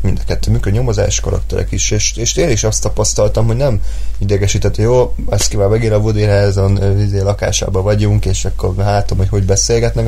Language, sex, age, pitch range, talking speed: Hungarian, male, 20-39, 90-105 Hz, 190 wpm